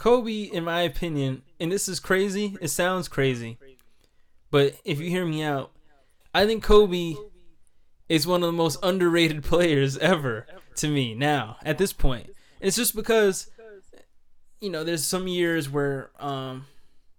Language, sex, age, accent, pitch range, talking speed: English, male, 20-39, American, 140-185 Hz, 155 wpm